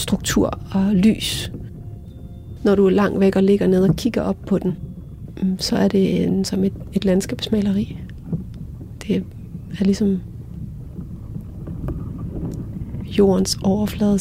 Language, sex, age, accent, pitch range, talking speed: Danish, female, 30-49, native, 190-220 Hz, 125 wpm